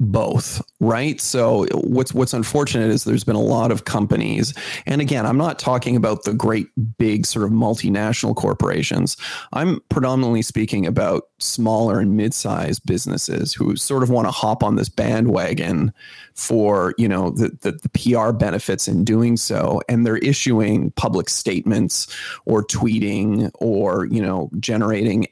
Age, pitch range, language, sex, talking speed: 30-49, 110-130 Hz, English, male, 155 wpm